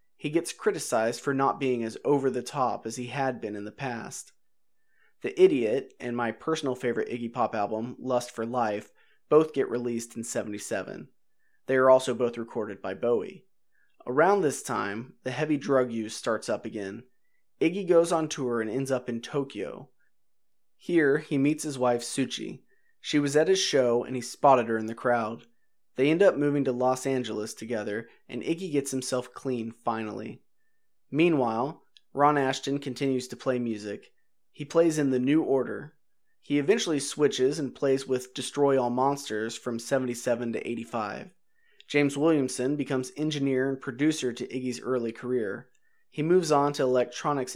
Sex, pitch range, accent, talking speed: male, 120-145 Hz, American, 165 wpm